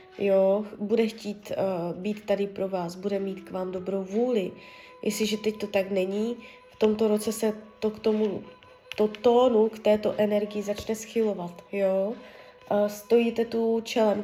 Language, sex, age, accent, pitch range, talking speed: Czech, female, 20-39, native, 200-235 Hz, 160 wpm